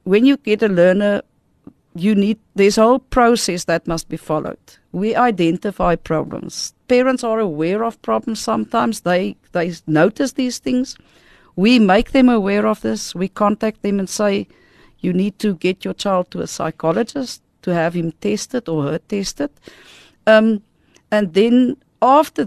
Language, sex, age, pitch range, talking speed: English, female, 50-69, 185-225 Hz, 160 wpm